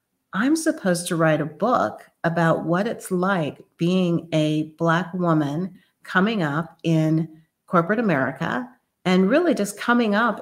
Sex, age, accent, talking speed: female, 40-59, American, 140 wpm